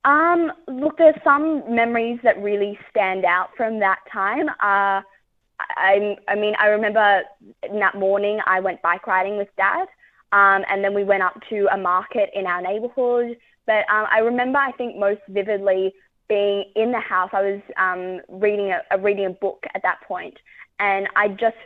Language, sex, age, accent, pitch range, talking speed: English, female, 20-39, Australian, 185-205 Hz, 185 wpm